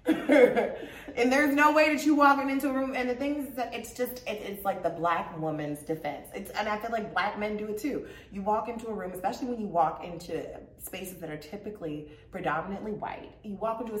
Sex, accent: female, American